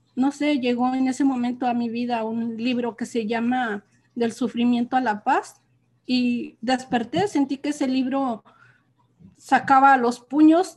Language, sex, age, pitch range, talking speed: English, female, 40-59, 225-260 Hz, 155 wpm